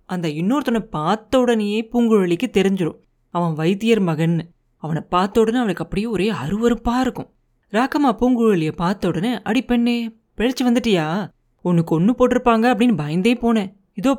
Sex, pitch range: female, 170-230 Hz